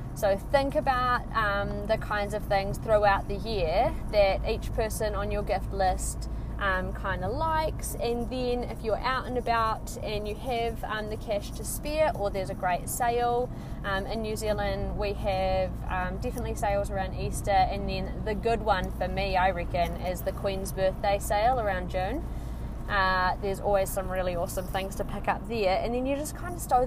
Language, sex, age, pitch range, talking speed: English, female, 20-39, 190-230 Hz, 190 wpm